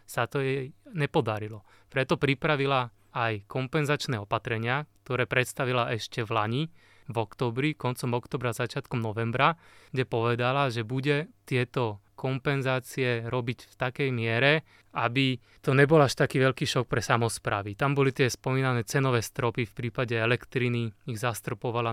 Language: Slovak